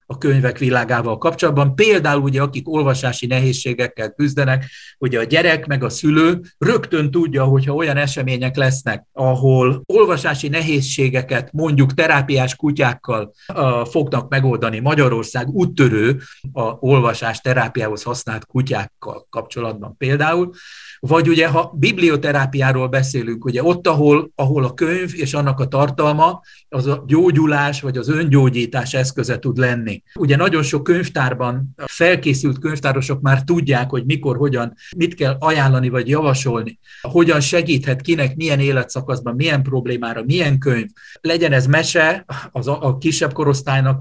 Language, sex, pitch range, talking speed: Hungarian, male, 130-155 Hz, 125 wpm